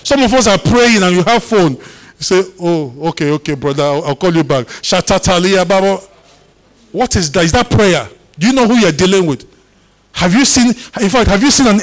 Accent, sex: Nigerian, male